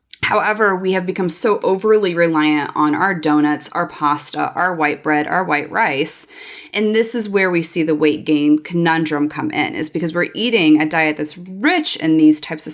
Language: English